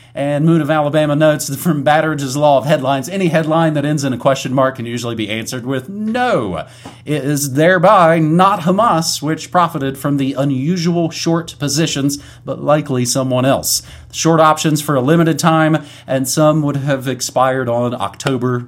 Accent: American